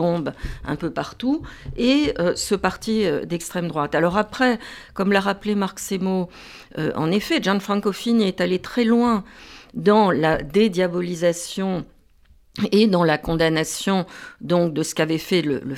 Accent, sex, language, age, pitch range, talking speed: French, female, French, 50-69, 155-210 Hz, 150 wpm